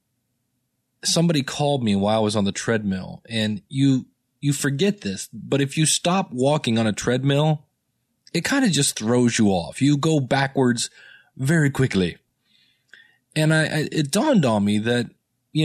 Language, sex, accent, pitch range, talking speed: English, male, American, 110-145 Hz, 165 wpm